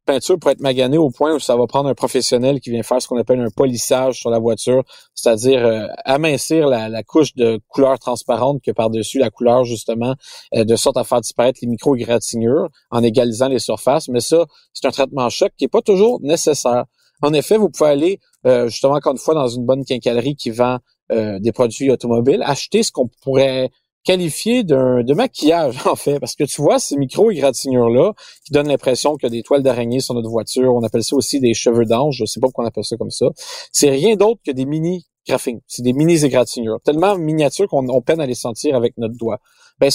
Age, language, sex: 40-59, French, male